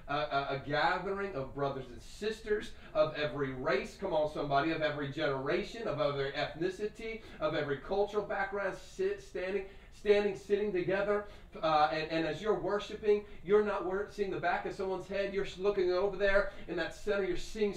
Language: English